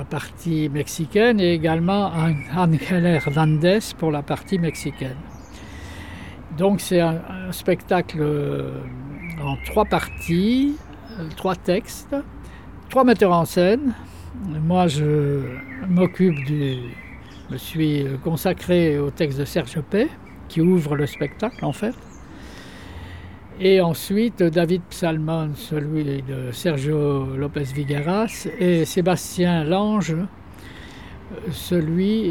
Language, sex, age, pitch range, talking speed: French, male, 60-79, 145-180 Hz, 100 wpm